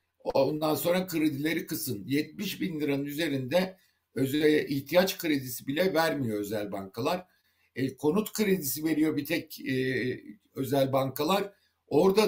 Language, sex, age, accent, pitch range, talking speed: Turkish, male, 60-79, native, 135-175 Hz, 115 wpm